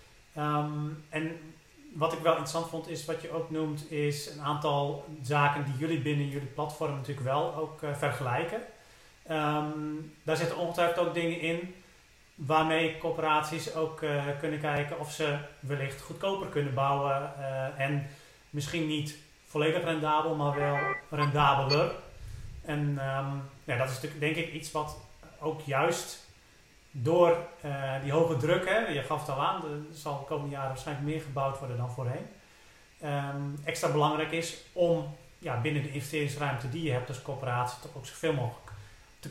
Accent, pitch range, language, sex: Dutch, 135-160 Hz, Dutch, male